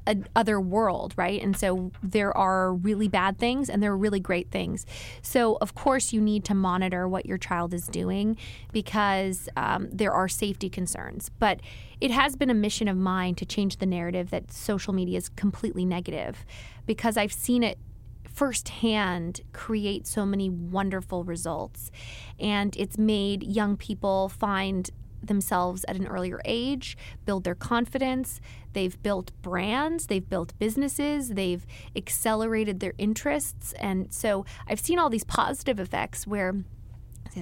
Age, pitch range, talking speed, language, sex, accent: 20-39, 180-220 Hz, 155 wpm, English, female, American